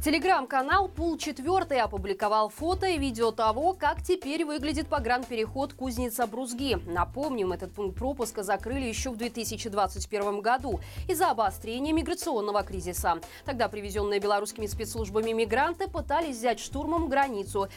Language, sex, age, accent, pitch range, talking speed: Russian, female, 20-39, native, 215-305 Hz, 120 wpm